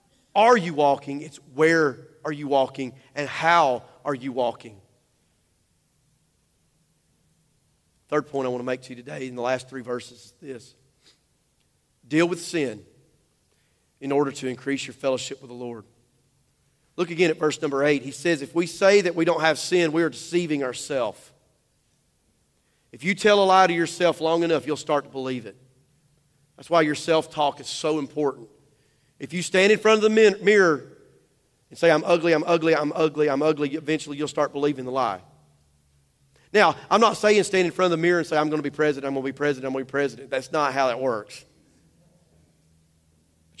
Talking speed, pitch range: 190 wpm, 130-165 Hz